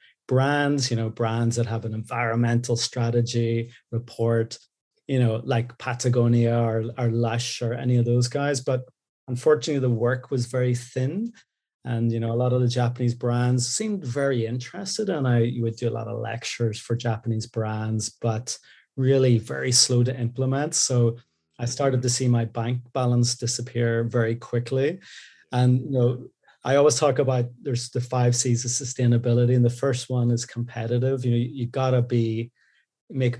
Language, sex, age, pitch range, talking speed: English, male, 30-49, 115-125 Hz, 170 wpm